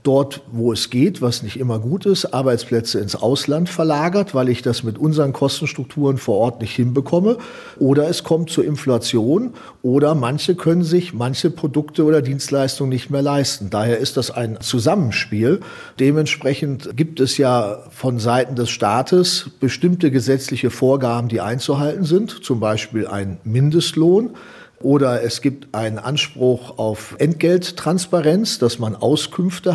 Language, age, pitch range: German, 40-59, 120-160 Hz